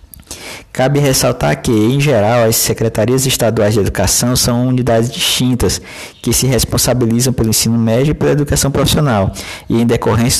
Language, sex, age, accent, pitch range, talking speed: Portuguese, male, 20-39, Brazilian, 100-130 Hz, 150 wpm